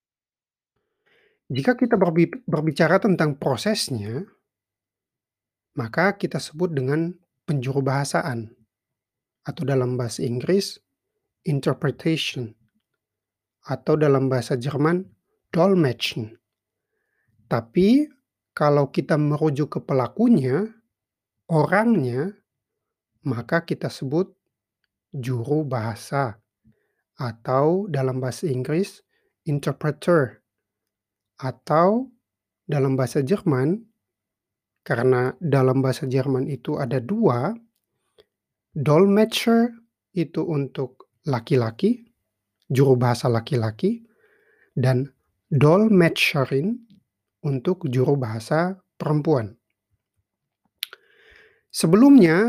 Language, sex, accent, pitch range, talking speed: Indonesian, male, native, 130-185 Hz, 70 wpm